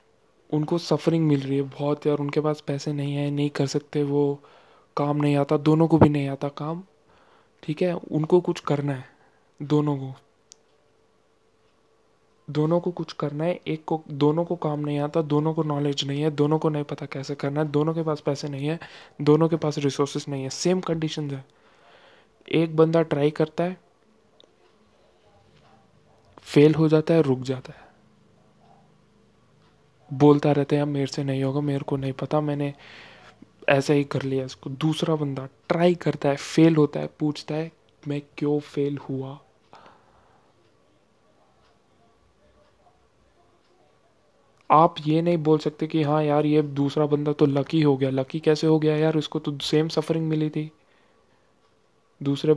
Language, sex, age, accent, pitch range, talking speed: Hindi, male, 20-39, native, 140-155 Hz, 165 wpm